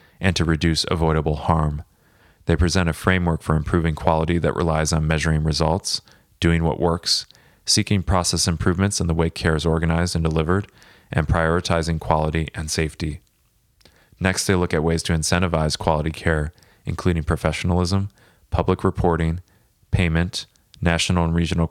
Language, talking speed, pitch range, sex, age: English, 145 wpm, 80-90 Hz, male, 30-49